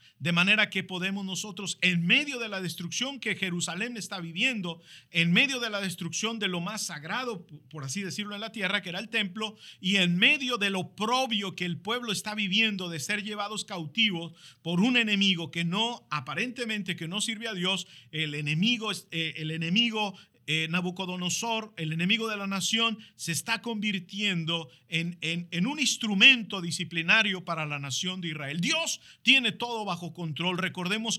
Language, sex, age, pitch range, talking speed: Spanish, male, 50-69, 175-225 Hz, 175 wpm